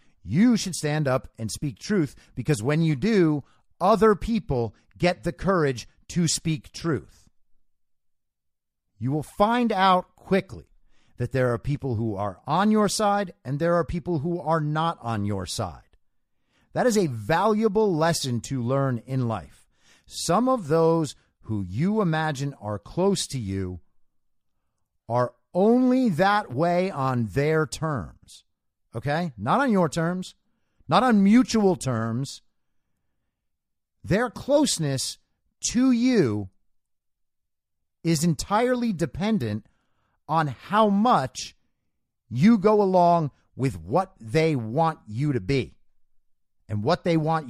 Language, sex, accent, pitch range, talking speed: English, male, American, 120-185 Hz, 130 wpm